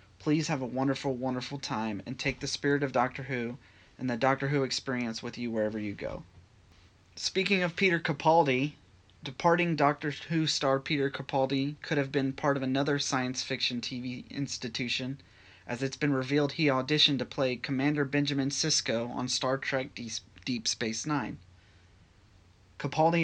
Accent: American